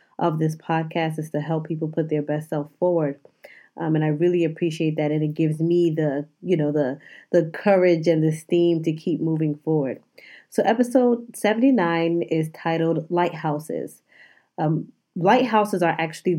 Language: English